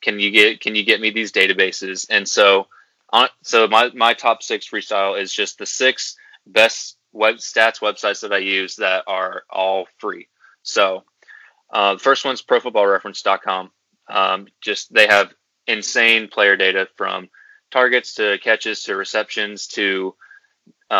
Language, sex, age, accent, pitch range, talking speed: English, male, 20-39, American, 100-115 Hz, 155 wpm